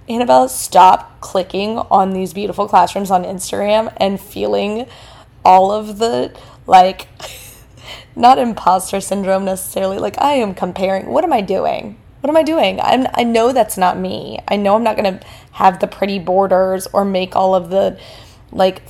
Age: 20-39